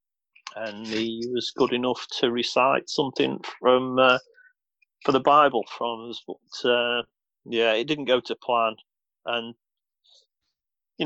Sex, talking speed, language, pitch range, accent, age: male, 135 wpm, English, 105-140 Hz, British, 40-59